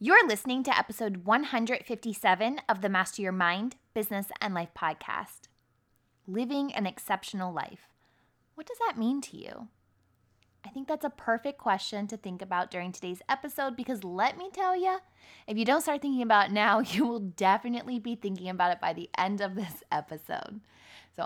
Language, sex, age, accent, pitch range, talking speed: English, female, 20-39, American, 180-255 Hz, 180 wpm